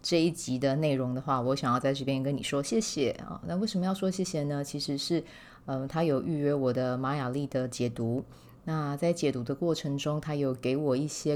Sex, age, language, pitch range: female, 20-39, Chinese, 135-155 Hz